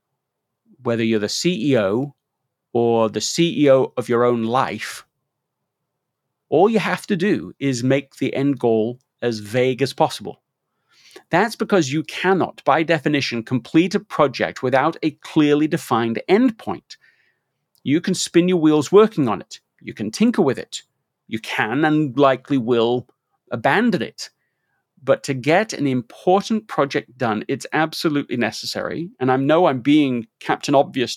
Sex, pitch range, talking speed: male, 130-170 Hz, 150 wpm